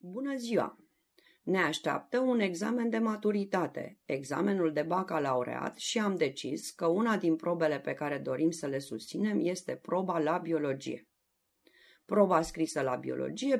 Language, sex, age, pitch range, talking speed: Romanian, female, 30-49, 150-205 Hz, 140 wpm